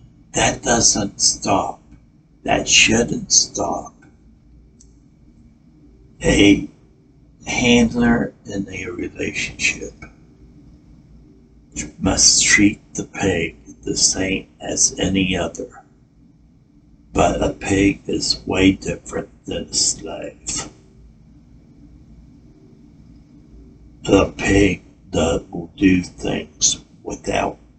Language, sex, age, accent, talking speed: English, male, 60-79, American, 80 wpm